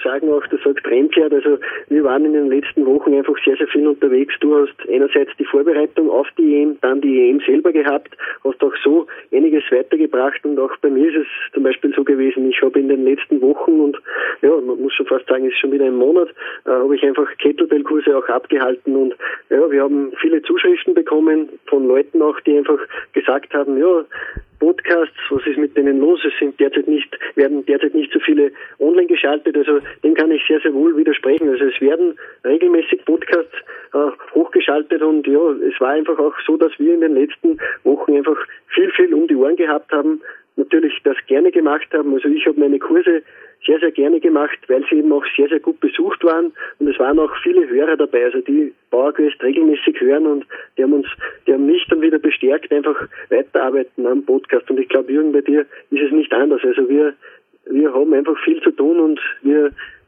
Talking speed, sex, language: 210 wpm, male, German